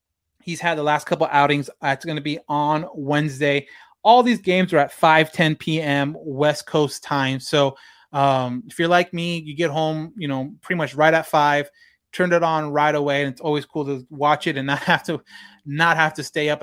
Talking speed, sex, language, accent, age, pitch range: 220 wpm, male, English, American, 20-39, 140-175 Hz